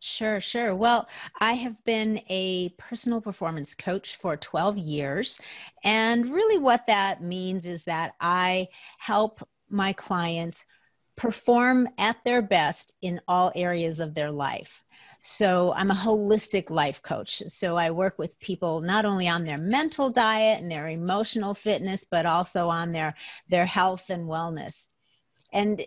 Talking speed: 150 wpm